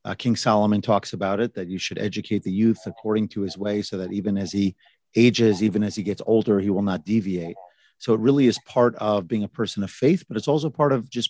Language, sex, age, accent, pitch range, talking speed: English, male, 40-59, American, 100-120 Hz, 255 wpm